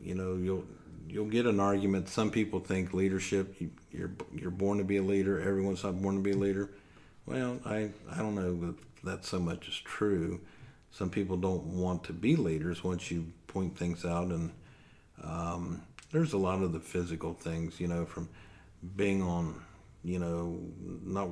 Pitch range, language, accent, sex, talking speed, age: 85-95 Hz, English, American, male, 185 wpm, 50-69